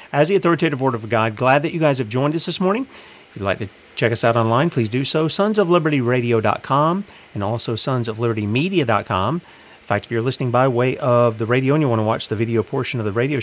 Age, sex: 40-59, male